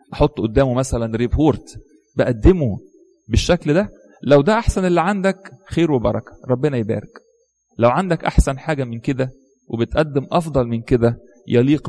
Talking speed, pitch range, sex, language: 140 wpm, 115-150 Hz, male, English